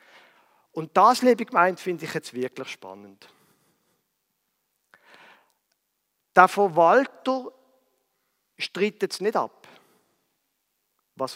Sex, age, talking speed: male, 50-69, 85 wpm